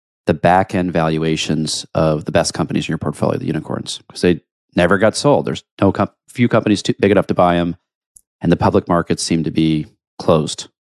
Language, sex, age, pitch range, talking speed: English, male, 30-49, 85-105 Hz, 205 wpm